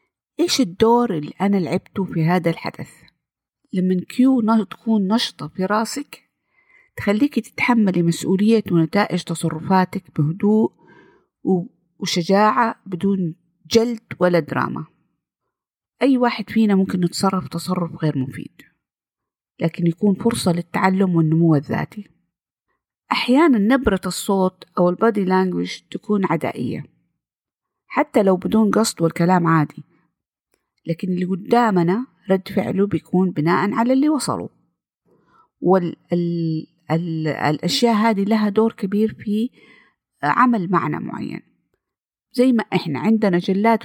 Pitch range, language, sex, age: 170-220 Hz, Arabic, female, 50-69